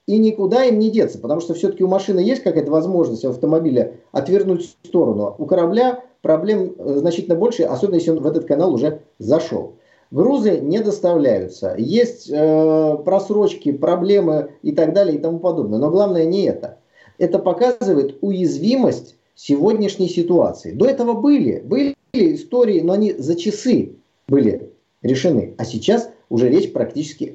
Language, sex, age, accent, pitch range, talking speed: Russian, male, 40-59, native, 155-205 Hz, 150 wpm